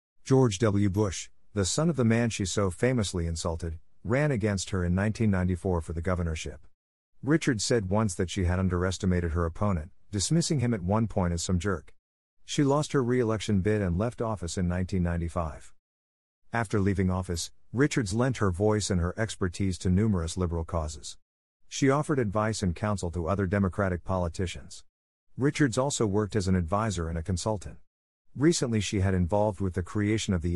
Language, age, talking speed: English, 50-69, 175 wpm